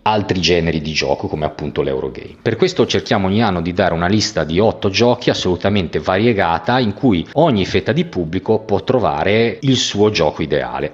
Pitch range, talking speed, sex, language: 85-110 Hz, 180 wpm, male, Italian